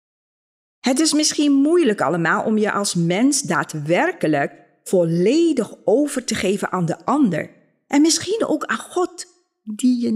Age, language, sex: 40-59, Dutch, female